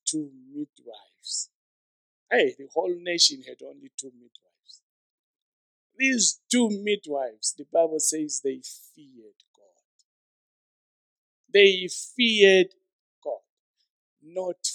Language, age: English, 50-69